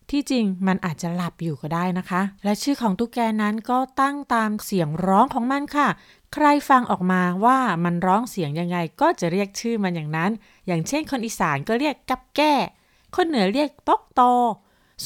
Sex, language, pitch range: female, Thai, 190-255 Hz